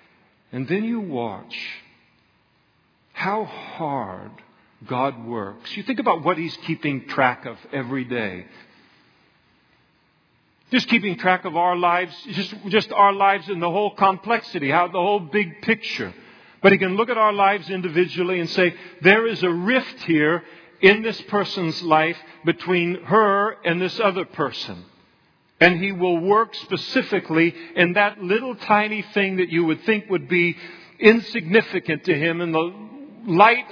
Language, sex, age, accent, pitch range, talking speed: English, male, 50-69, American, 155-195 Hz, 150 wpm